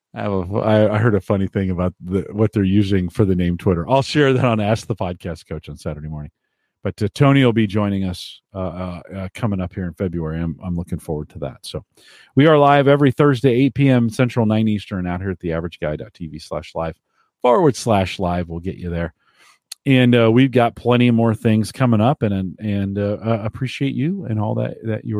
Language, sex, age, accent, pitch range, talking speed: English, male, 40-59, American, 95-120 Hz, 220 wpm